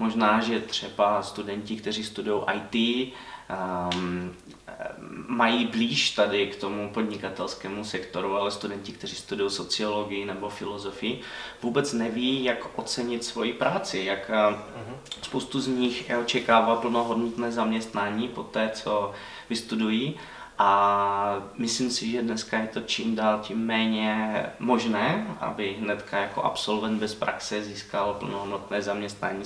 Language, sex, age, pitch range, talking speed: Slovak, male, 20-39, 105-120 Hz, 120 wpm